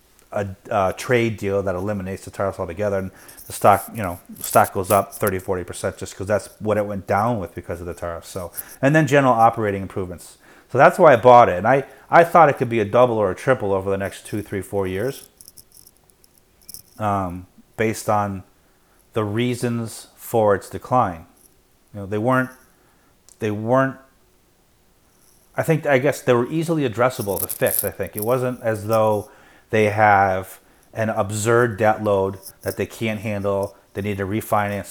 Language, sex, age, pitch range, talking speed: English, male, 30-49, 100-125 Hz, 180 wpm